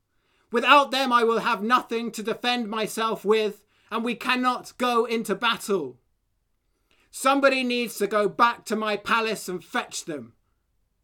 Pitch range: 185-240 Hz